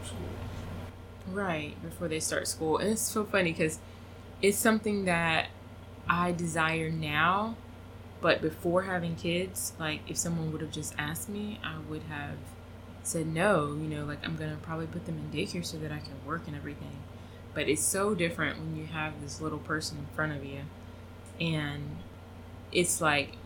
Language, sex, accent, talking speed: English, female, American, 170 wpm